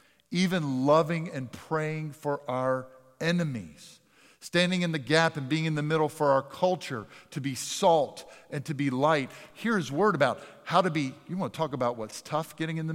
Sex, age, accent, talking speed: male, 50-69, American, 190 wpm